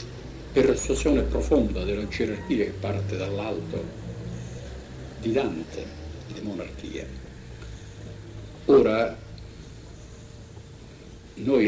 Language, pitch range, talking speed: Italian, 80-115 Hz, 75 wpm